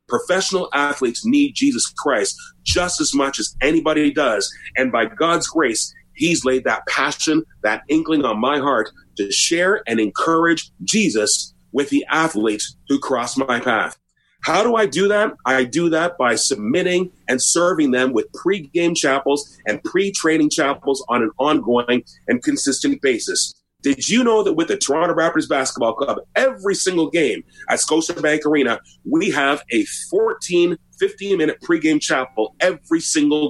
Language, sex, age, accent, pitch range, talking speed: English, male, 30-49, American, 140-215 Hz, 155 wpm